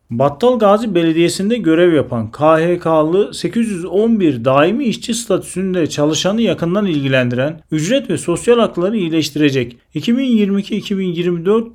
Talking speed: 90 wpm